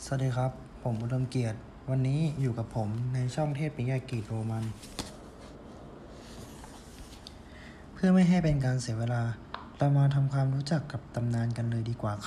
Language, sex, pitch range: Thai, male, 115-140 Hz